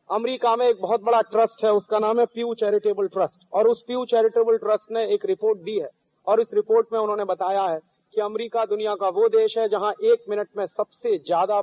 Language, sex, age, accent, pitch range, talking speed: Hindi, male, 40-59, native, 195-235 Hz, 220 wpm